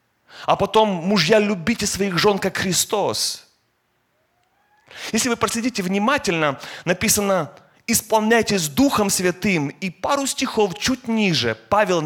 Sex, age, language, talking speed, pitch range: male, 30-49, Russian, 110 wpm, 160-230 Hz